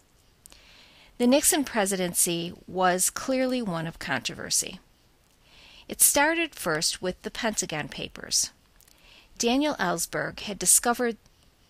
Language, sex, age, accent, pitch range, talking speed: English, female, 40-59, American, 170-235 Hz, 95 wpm